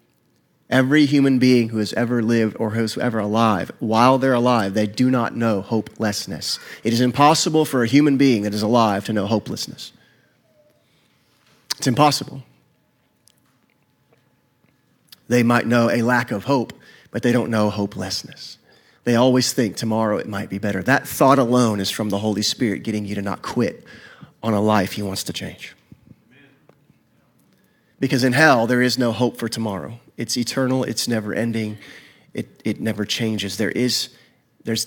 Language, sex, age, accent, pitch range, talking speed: English, male, 30-49, American, 105-125 Hz, 165 wpm